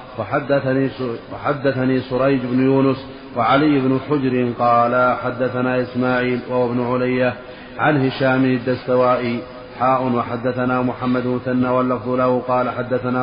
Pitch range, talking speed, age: 125-130 Hz, 105 wpm, 30-49